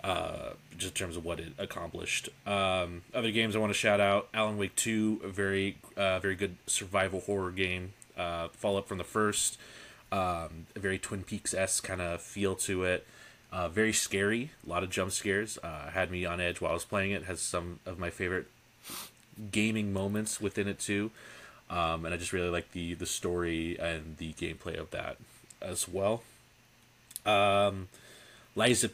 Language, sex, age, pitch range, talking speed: English, male, 30-49, 85-105 Hz, 185 wpm